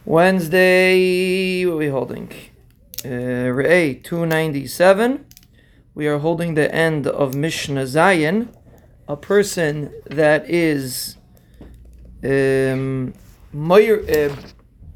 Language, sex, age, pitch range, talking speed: English, male, 30-49, 155-200 Hz, 85 wpm